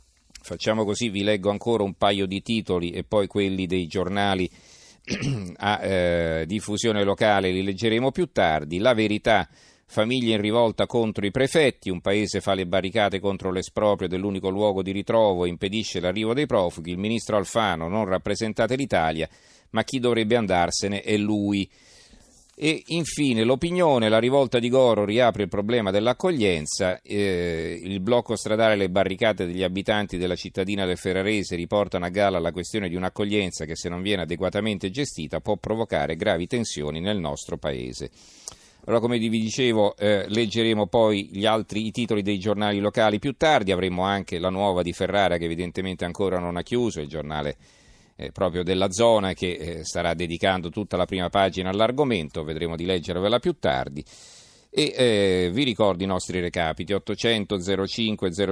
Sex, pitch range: male, 90-110 Hz